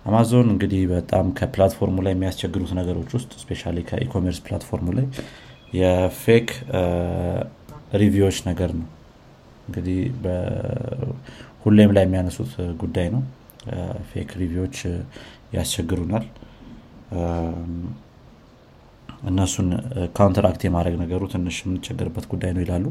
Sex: male